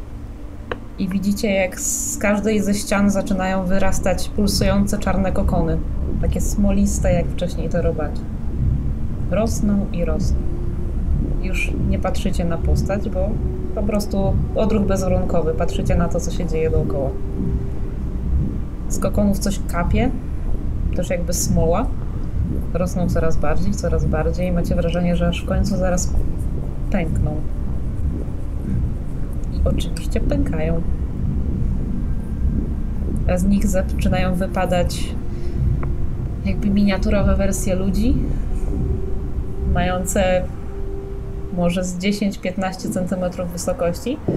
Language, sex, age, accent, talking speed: Polish, female, 20-39, native, 105 wpm